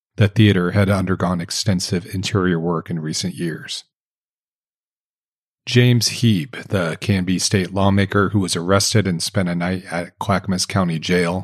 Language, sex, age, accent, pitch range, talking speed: English, male, 40-59, American, 90-105 Hz, 140 wpm